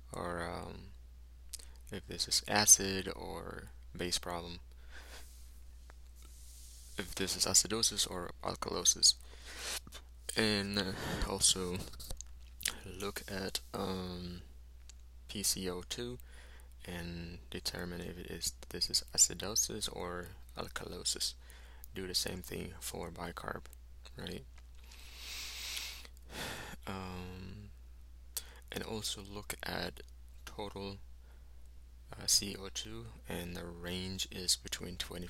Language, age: English, 20-39